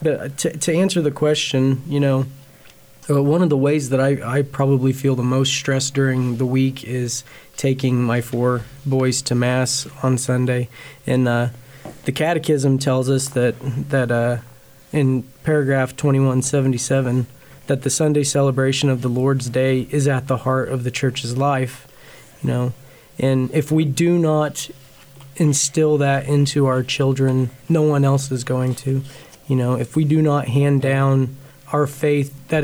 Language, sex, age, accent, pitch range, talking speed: English, male, 20-39, American, 130-145 Hz, 165 wpm